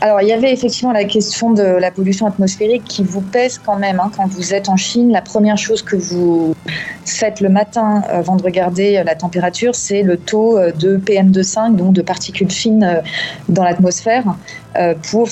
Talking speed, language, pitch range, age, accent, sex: 185 wpm, French, 175-210 Hz, 30-49, French, female